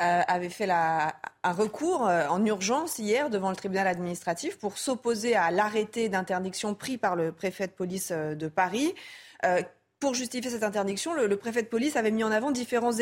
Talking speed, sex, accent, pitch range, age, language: 180 wpm, female, French, 190-245 Hz, 30-49, French